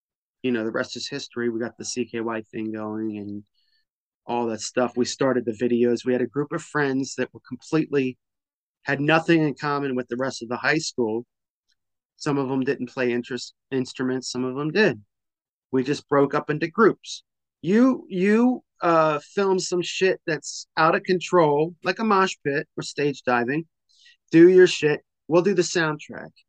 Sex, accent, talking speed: male, American, 185 wpm